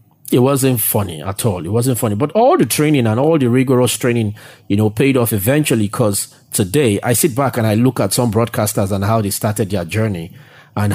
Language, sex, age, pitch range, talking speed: English, male, 30-49, 105-125 Hz, 220 wpm